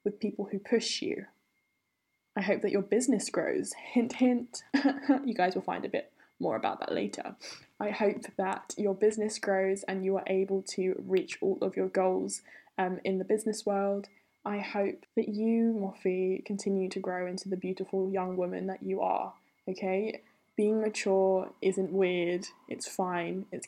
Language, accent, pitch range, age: English, British, 190-210 Hz, 10-29